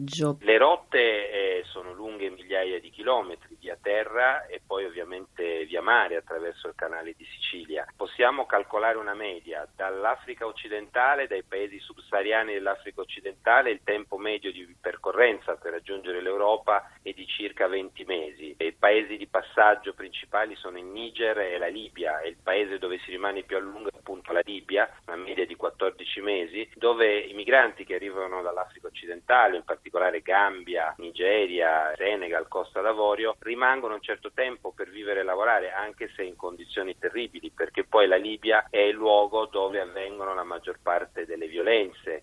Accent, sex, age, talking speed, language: native, male, 40-59, 160 wpm, Italian